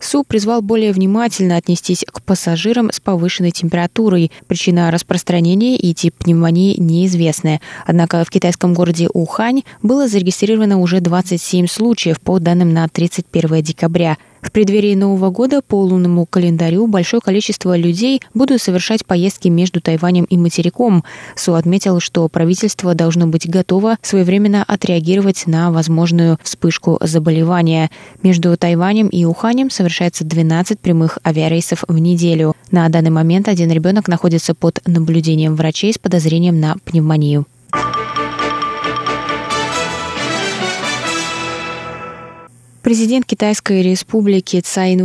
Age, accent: 20-39, native